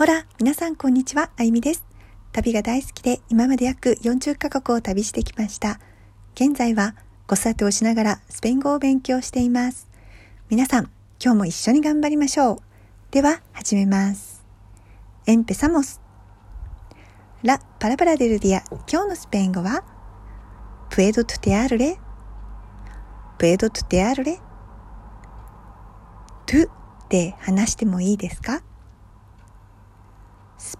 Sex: female